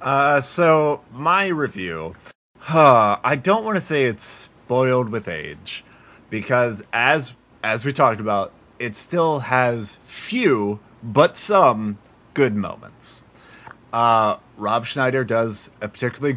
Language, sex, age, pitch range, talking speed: English, male, 30-49, 115-150 Hz, 125 wpm